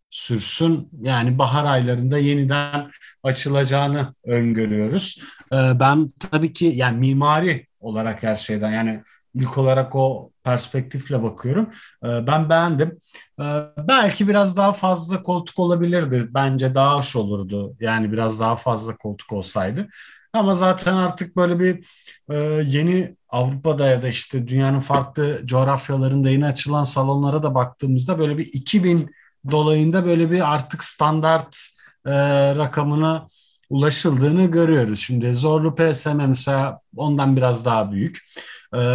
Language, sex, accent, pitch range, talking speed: Turkish, male, native, 125-155 Hz, 120 wpm